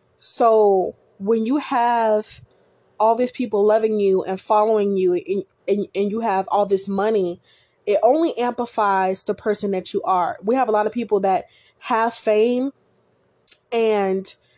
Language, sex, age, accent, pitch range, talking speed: English, female, 20-39, American, 195-230 Hz, 155 wpm